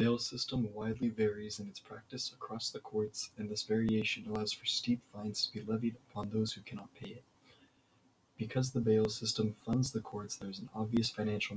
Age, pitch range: 20-39, 105-120 Hz